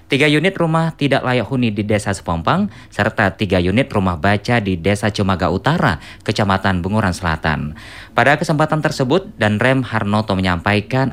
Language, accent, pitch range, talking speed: Indonesian, native, 95-125 Hz, 150 wpm